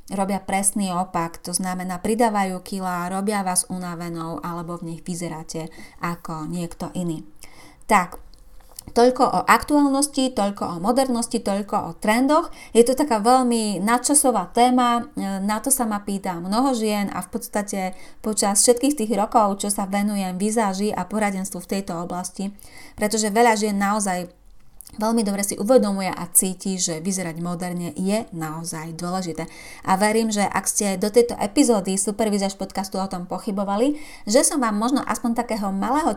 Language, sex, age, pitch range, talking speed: Slovak, female, 30-49, 180-235 Hz, 155 wpm